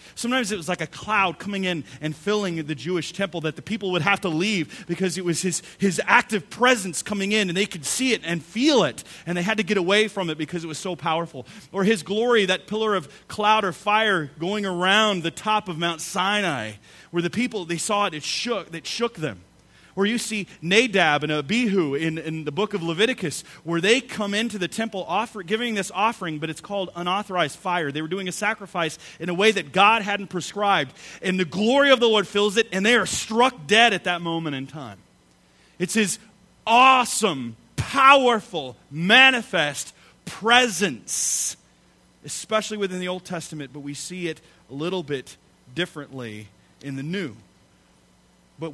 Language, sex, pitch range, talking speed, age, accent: English, male, 150-215 Hz, 195 wpm, 30-49, American